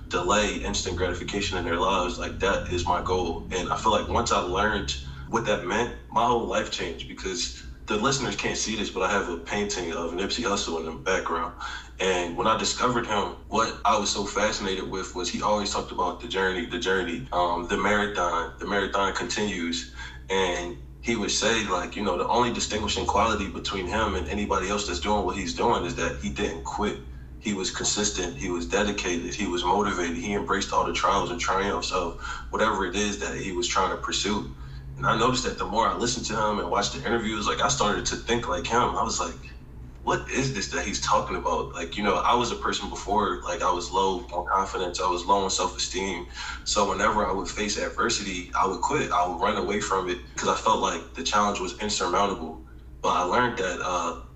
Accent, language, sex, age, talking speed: American, English, male, 20-39, 215 wpm